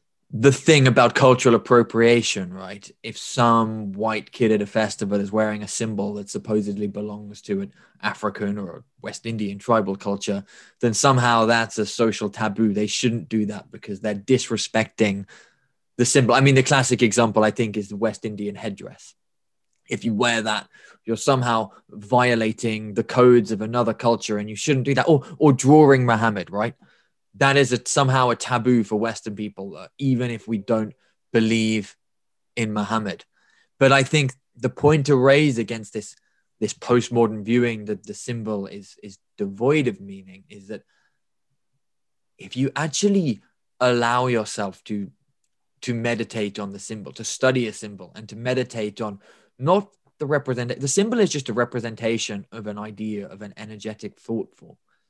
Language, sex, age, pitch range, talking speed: English, male, 20-39, 105-125 Hz, 165 wpm